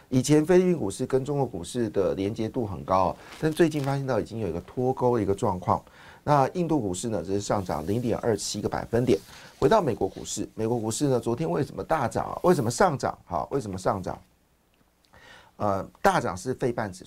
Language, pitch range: Chinese, 100-130 Hz